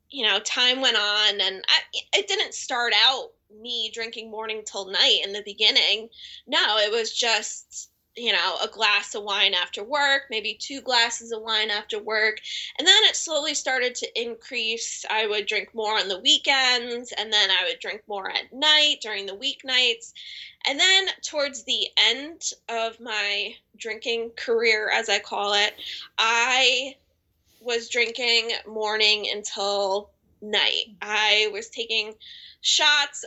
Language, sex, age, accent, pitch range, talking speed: English, female, 20-39, American, 205-245 Hz, 155 wpm